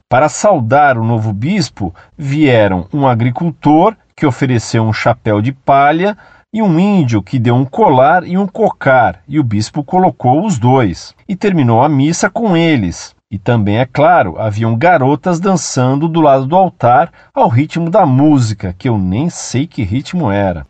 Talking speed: 170 wpm